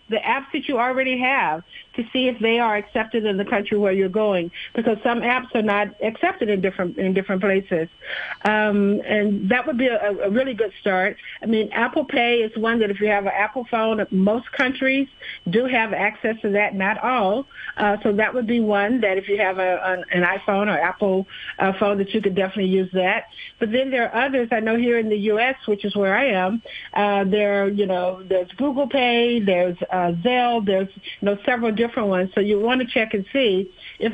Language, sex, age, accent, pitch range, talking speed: English, female, 50-69, American, 195-235 Hz, 220 wpm